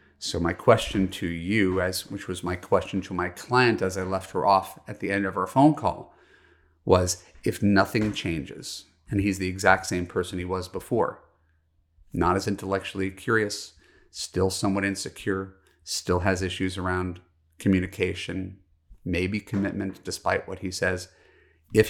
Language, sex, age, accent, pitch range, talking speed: English, male, 30-49, American, 90-100 Hz, 155 wpm